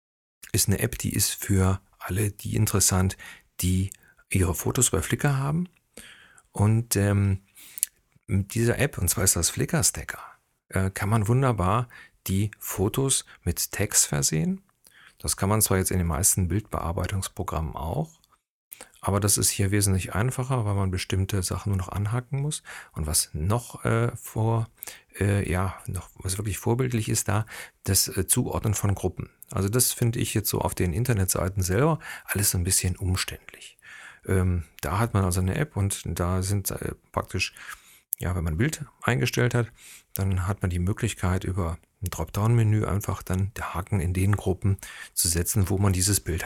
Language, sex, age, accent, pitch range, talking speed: German, male, 40-59, German, 95-115 Hz, 165 wpm